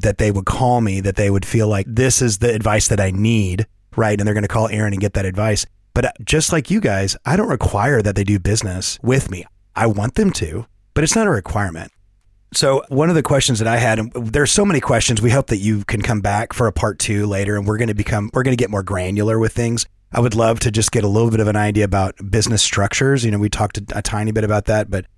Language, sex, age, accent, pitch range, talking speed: English, male, 30-49, American, 100-120 Hz, 275 wpm